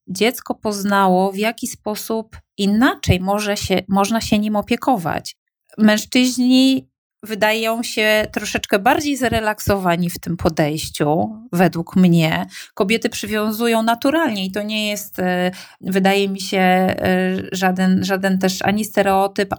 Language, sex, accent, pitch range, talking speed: Polish, female, native, 185-215 Hz, 110 wpm